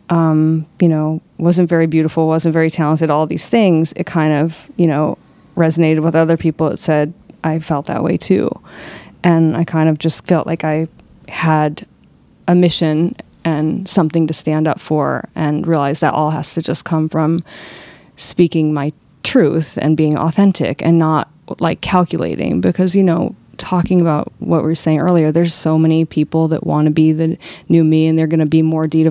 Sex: female